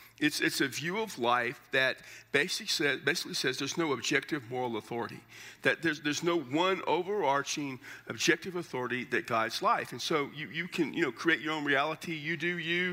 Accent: American